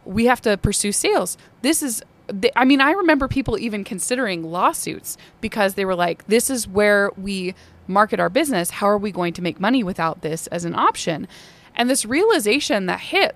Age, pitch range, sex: 20-39, 195-270 Hz, female